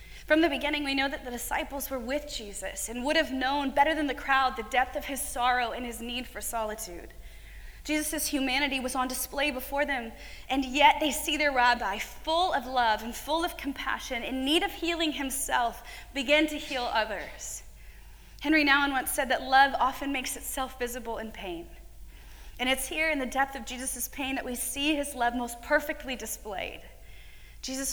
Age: 20-39